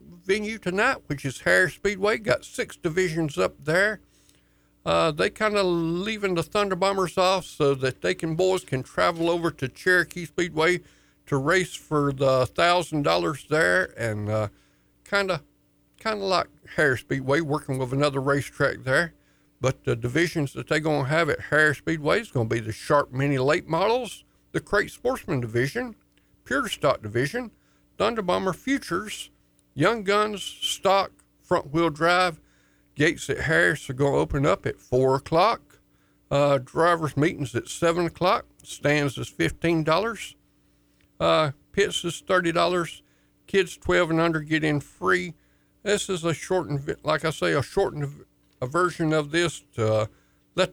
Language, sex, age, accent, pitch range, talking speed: English, male, 60-79, American, 130-180 Hz, 155 wpm